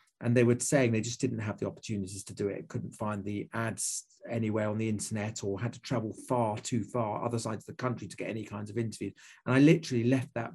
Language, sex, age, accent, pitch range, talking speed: English, male, 40-59, British, 110-130 Hz, 250 wpm